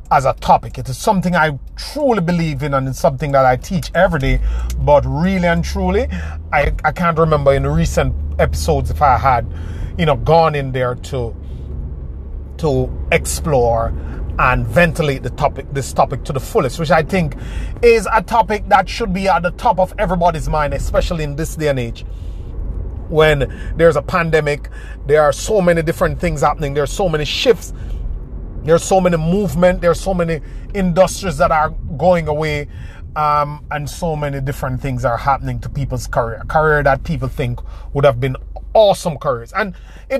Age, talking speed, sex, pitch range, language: 30-49, 180 wpm, male, 120-180 Hz, English